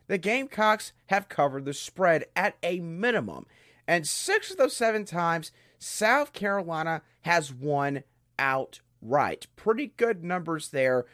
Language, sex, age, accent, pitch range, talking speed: English, male, 30-49, American, 160-245 Hz, 130 wpm